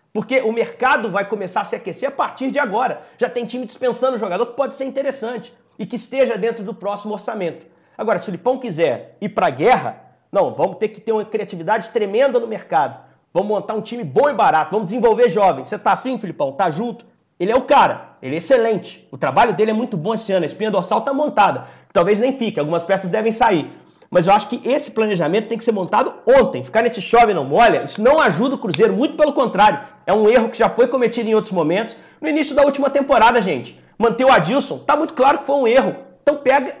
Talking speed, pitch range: 230 wpm, 210-260 Hz